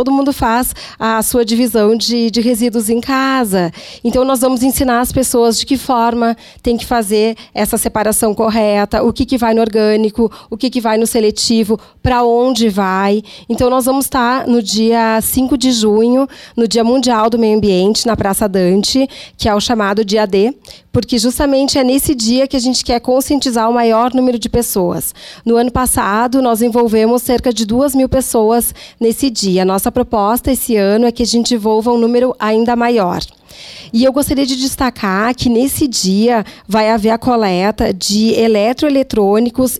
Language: Portuguese